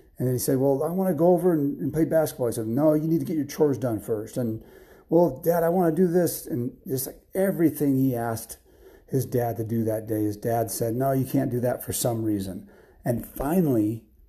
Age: 40-59